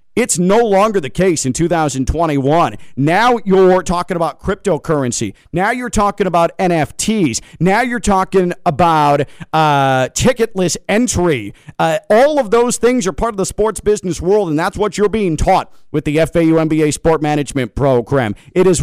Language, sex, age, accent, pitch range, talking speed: English, male, 40-59, American, 140-195 Hz, 165 wpm